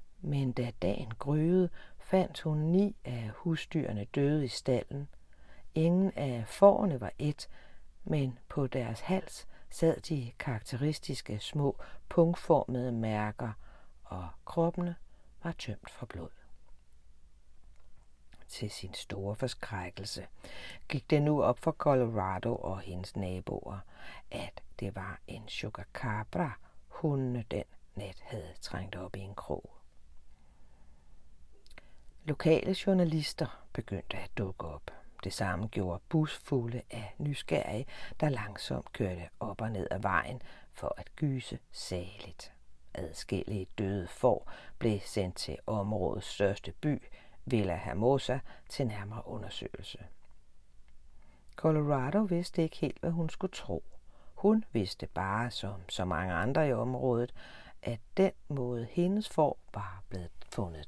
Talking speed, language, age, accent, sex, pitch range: 120 wpm, Danish, 60-79, native, female, 95-150 Hz